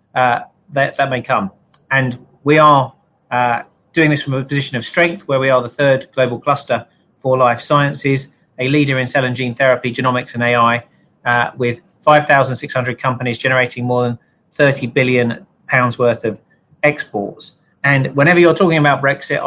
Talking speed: 165 wpm